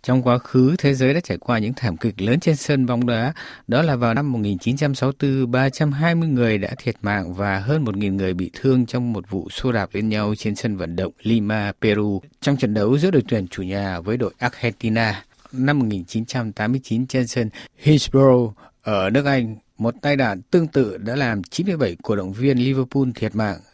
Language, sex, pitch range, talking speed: Vietnamese, male, 110-135 Hz, 195 wpm